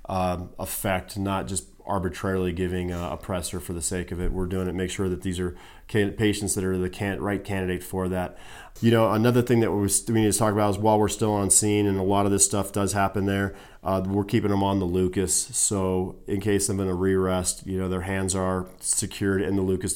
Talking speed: 245 wpm